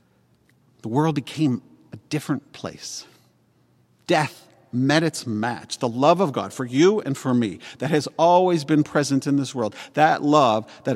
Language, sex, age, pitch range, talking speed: English, male, 50-69, 115-145 Hz, 165 wpm